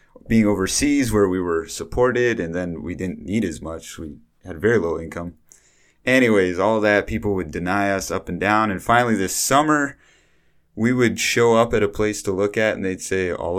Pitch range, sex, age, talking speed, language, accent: 85-110 Hz, male, 30-49, 205 wpm, English, American